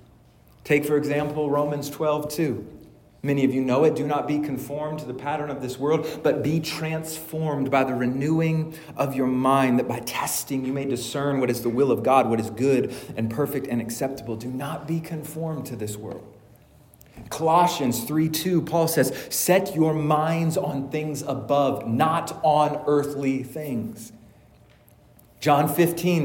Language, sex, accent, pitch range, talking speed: English, male, American, 135-165 Hz, 160 wpm